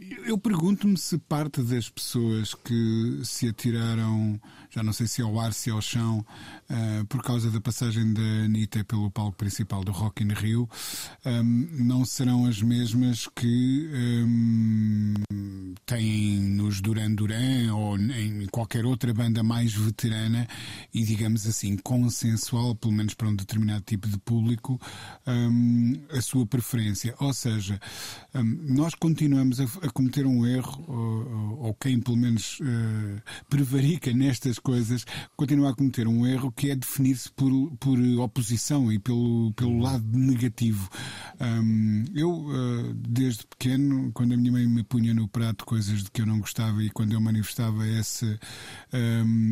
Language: Portuguese